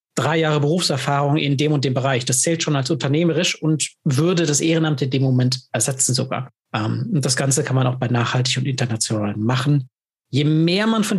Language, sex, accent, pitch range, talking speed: German, male, German, 130-165 Hz, 200 wpm